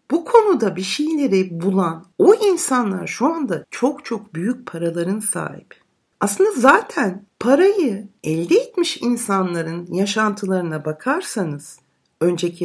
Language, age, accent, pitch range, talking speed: Turkish, 60-79, native, 185-280 Hz, 110 wpm